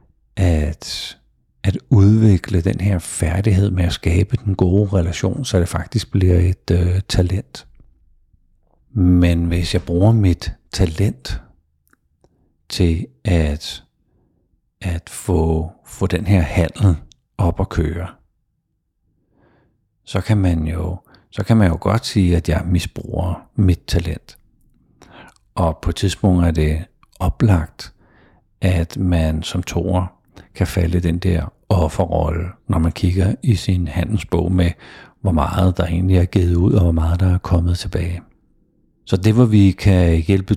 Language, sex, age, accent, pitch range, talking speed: Danish, male, 50-69, native, 85-95 Hz, 135 wpm